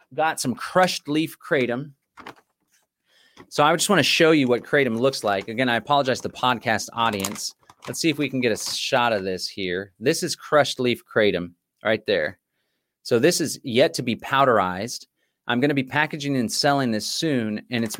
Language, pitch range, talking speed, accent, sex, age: English, 100-145 Hz, 195 wpm, American, male, 30-49